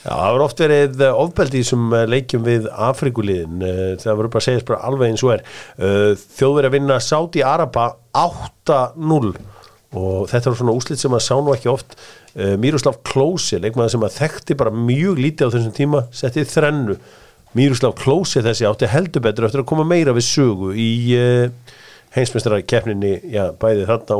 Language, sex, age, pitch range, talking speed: English, male, 50-69, 115-150 Hz, 165 wpm